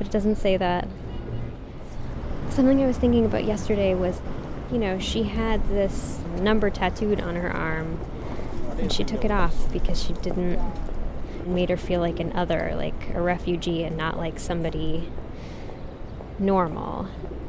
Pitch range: 165-215 Hz